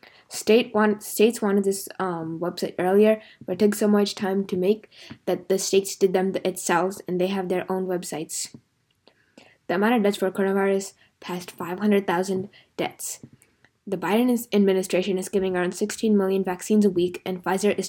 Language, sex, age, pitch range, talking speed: English, female, 10-29, 185-210 Hz, 170 wpm